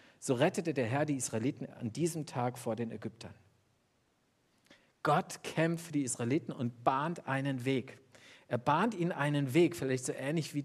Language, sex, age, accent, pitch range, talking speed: German, male, 50-69, German, 120-150 Hz, 170 wpm